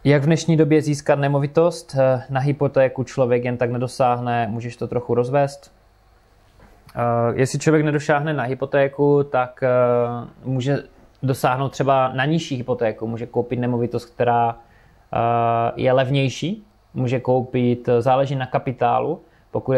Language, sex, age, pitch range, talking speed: Czech, male, 20-39, 120-130 Hz, 120 wpm